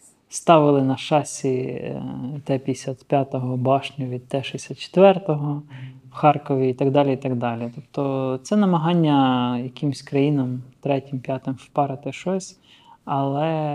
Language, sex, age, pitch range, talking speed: Ukrainian, male, 20-39, 135-150 Hz, 110 wpm